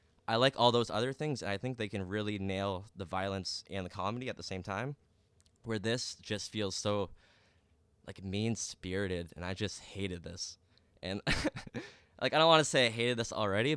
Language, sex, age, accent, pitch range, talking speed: English, male, 10-29, American, 90-110 Hz, 190 wpm